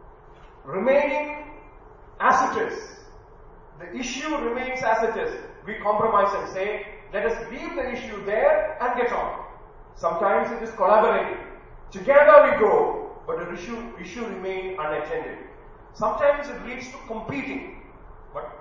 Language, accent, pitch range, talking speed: English, Indian, 190-255 Hz, 135 wpm